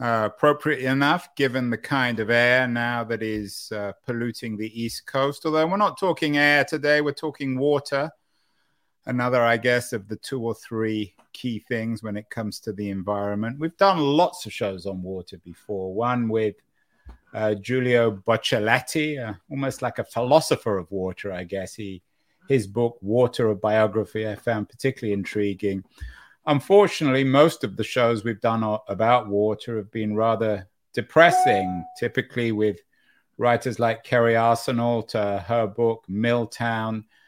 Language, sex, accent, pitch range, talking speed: English, male, British, 110-130 Hz, 155 wpm